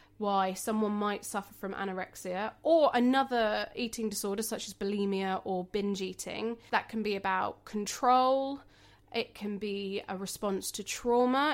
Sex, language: female, English